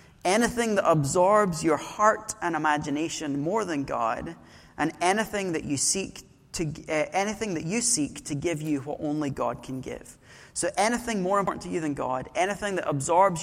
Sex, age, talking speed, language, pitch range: male, 30-49, 180 wpm, English, 140-180 Hz